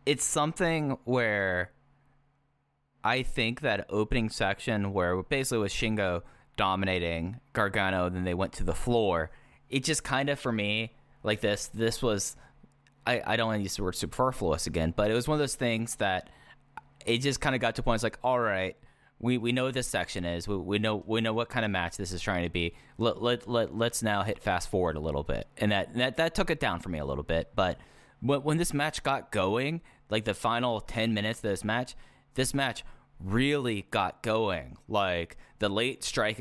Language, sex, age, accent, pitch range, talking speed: English, male, 20-39, American, 95-130 Hz, 210 wpm